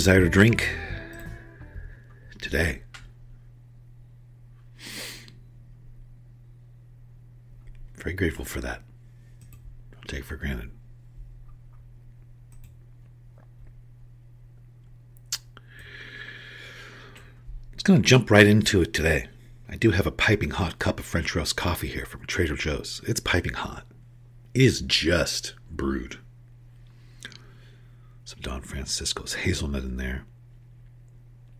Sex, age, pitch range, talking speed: male, 60-79, 110-120 Hz, 95 wpm